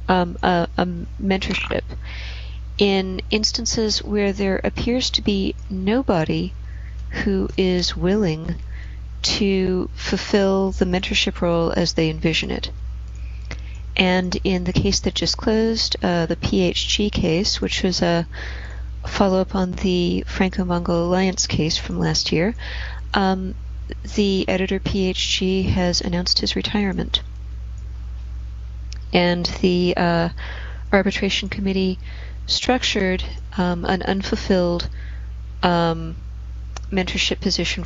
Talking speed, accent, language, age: 105 wpm, American, English, 30-49